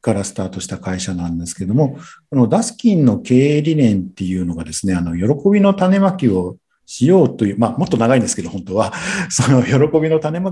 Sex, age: male, 50-69